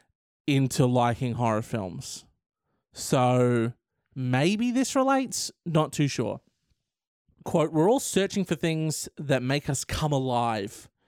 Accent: Australian